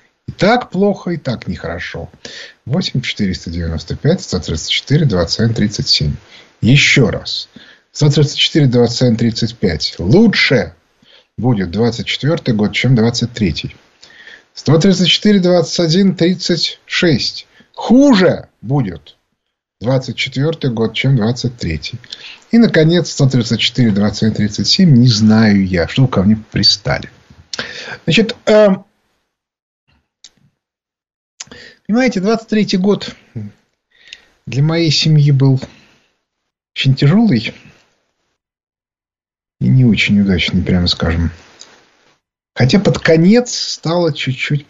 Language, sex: Russian, male